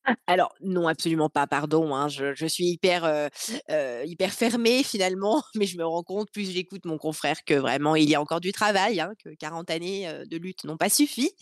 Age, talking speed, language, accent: 20-39, 220 wpm, French, French